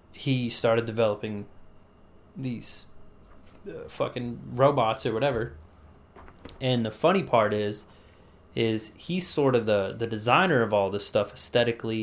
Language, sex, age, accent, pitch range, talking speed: English, male, 20-39, American, 105-135 Hz, 130 wpm